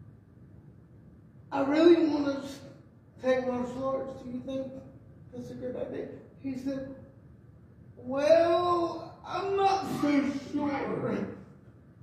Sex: male